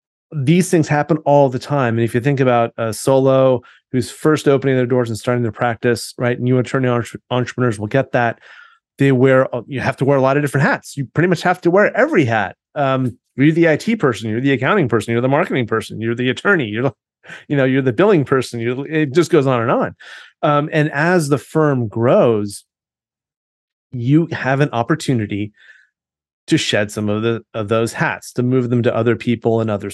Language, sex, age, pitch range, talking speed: English, male, 30-49, 115-140 Hz, 210 wpm